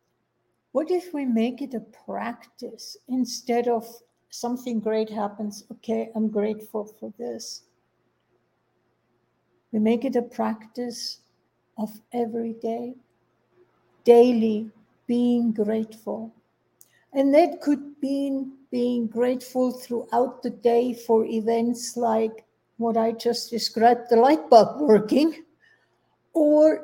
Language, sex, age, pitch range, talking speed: English, female, 60-79, 225-260 Hz, 110 wpm